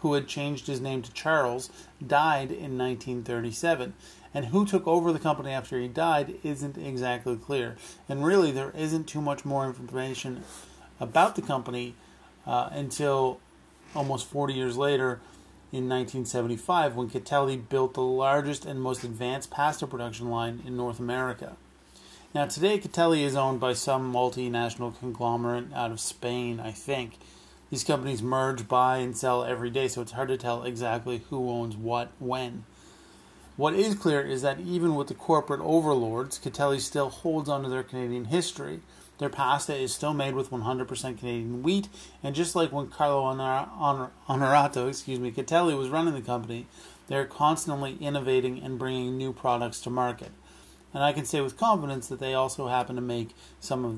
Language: English